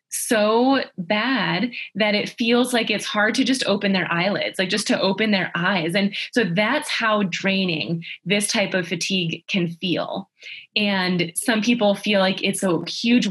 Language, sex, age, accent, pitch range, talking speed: English, female, 20-39, American, 180-225 Hz, 170 wpm